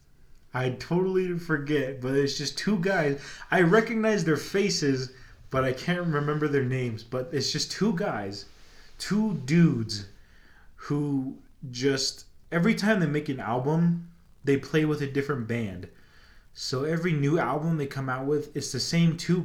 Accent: American